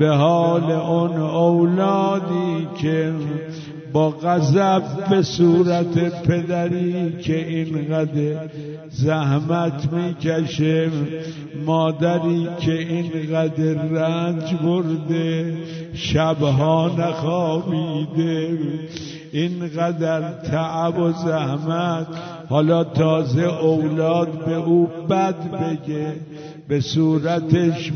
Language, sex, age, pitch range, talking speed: Persian, male, 60-79, 155-170 Hz, 75 wpm